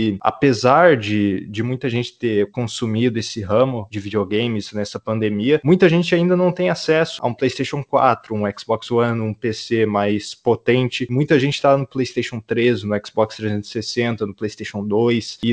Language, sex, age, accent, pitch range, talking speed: Portuguese, male, 20-39, Brazilian, 110-135 Hz, 165 wpm